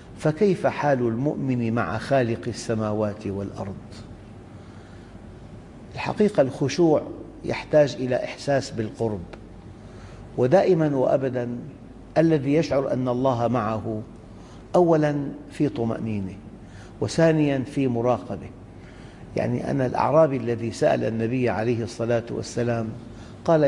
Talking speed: 90 wpm